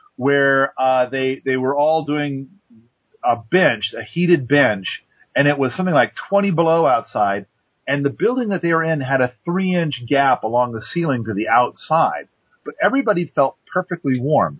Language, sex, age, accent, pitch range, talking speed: English, male, 40-59, American, 125-165 Hz, 175 wpm